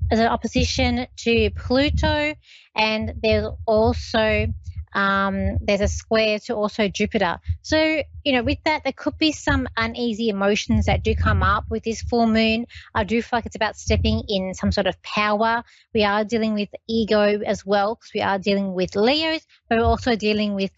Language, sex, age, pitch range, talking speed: English, female, 20-39, 195-235 Hz, 185 wpm